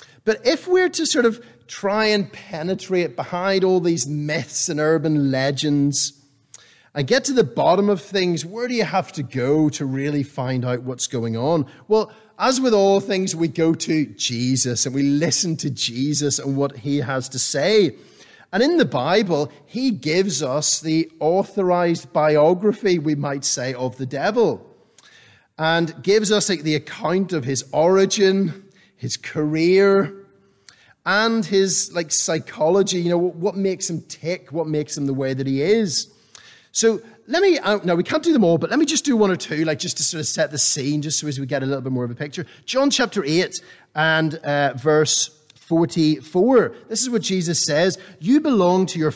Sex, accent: male, British